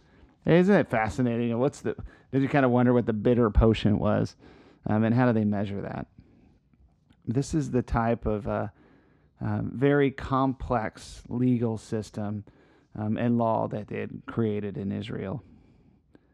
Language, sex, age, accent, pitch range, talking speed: English, male, 30-49, American, 110-135 Hz, 155 wpm